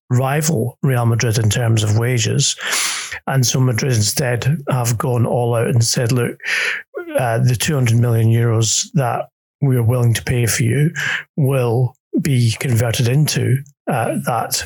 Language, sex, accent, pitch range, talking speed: English, male, British, 120-140 Hz, 150 wpm